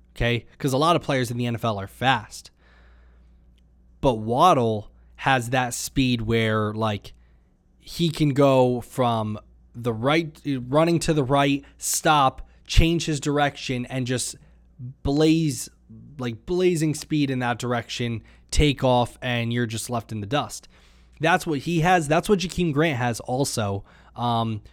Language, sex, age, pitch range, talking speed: English, male, 20-39, 110-140 Hz, 150 wpm